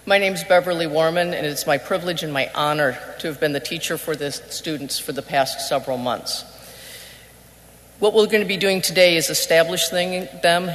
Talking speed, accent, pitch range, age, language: 195 wpm, American, 150-180 Hz, 50-69, English